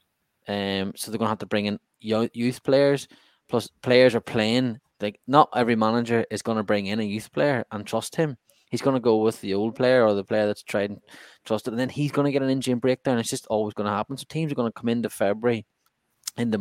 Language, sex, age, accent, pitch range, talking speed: English, male, 10-29, Irish, 105-125 Hz, 255 wpm